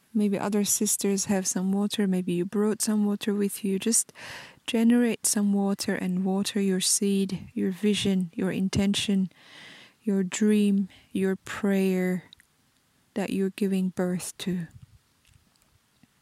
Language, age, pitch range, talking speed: Turkish, 20-39, 190-215 Hz, 125 wpm